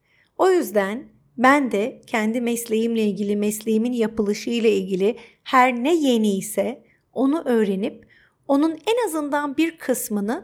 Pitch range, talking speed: 210-275 Hz, 115 wpm